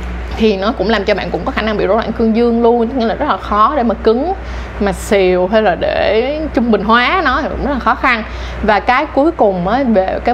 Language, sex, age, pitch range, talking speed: Vietnamese, female, 20-39, 195-260 Hz, 265 wpm